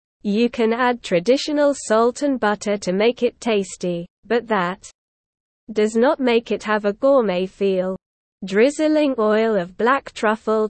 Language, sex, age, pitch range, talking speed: English, female, 20-39, 195-250 Hz, 145 wpm